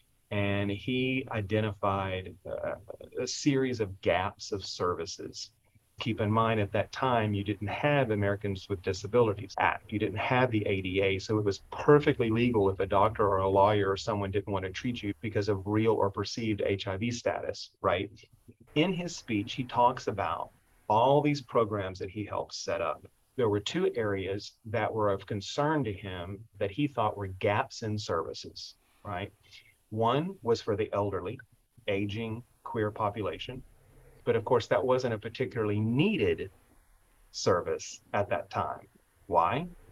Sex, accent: male, American